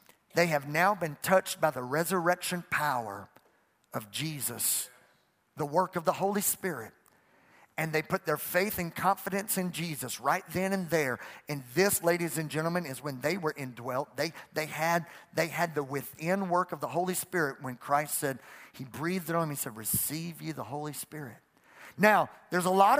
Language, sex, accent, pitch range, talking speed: English, male, American, 155-220 Hz, 185 wpm